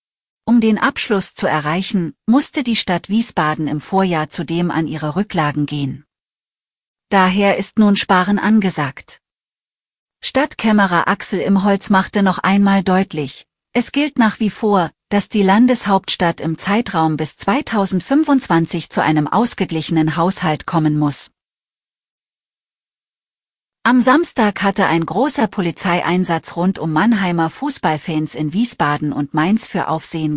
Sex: female